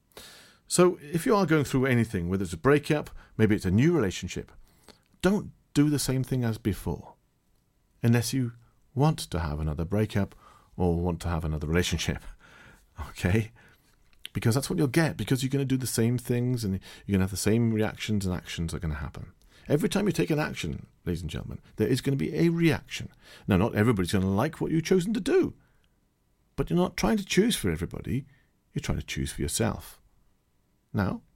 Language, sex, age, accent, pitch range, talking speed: English, male, 40-59, British, 90-150 Hz, 195 wpm